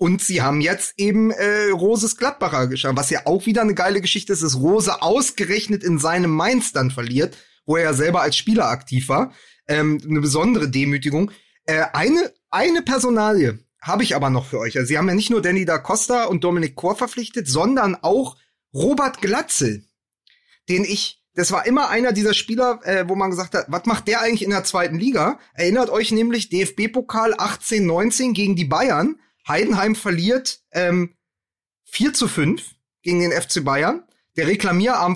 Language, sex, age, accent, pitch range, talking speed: German, male, 30-49, German, 165-220 Hz, 180 wpm